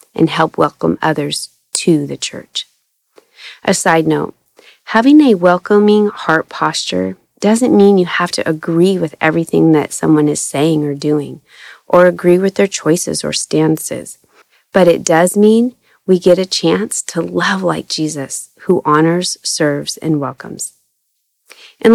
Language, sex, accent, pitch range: English, female, American, 160-205 Hz